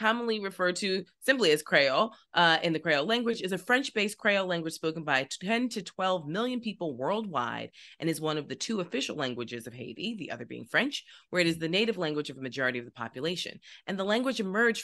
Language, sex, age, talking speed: English, female, 30-49, 220 wpm